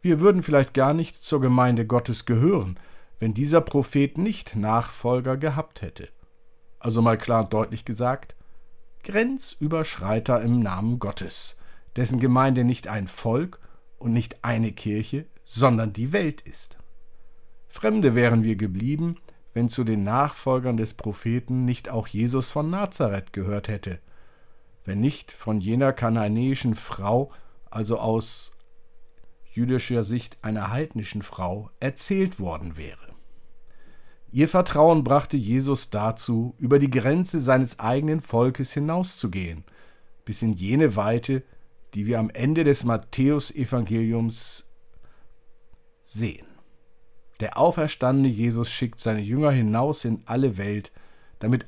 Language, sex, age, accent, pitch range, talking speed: German, male, 50-69, German, 110-140 Hz, 125 wpm